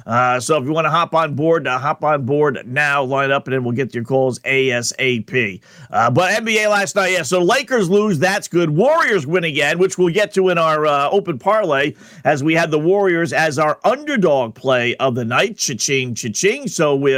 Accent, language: American, English